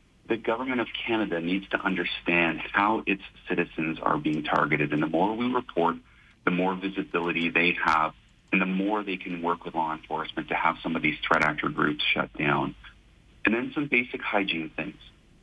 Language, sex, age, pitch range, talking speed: English, male, 40-59, 85-100 Hz, 185 wpm